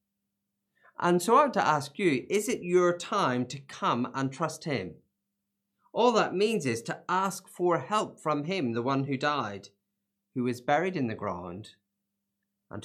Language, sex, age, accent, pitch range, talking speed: English, male, 30-49, British, 100-150 Hz, 175 wpm